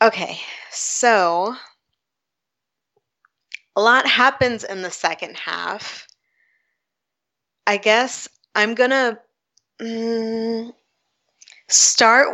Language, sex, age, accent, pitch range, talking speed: English, female, 20-39, American, 180-230 Hz, 80 wpm